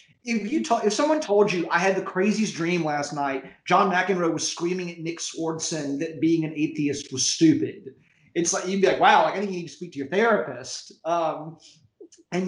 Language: English